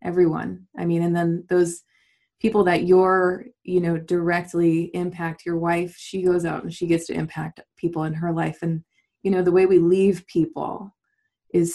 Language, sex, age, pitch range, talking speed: English, female, 20-39, 170-195 Hz, 185 wpm